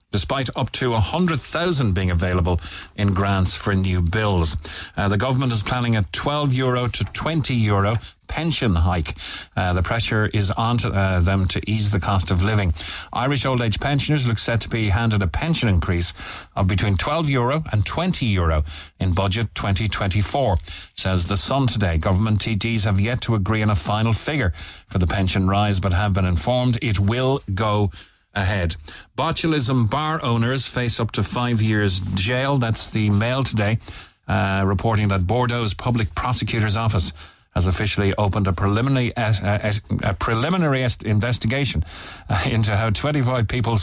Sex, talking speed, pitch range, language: male, 155 wpm, 95-120 Hz, English